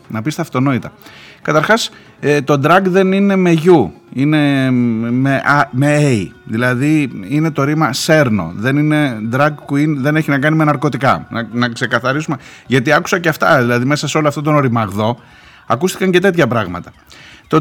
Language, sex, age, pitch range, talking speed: Greek, male, 30-49, 120-165 Hz, 165 wpm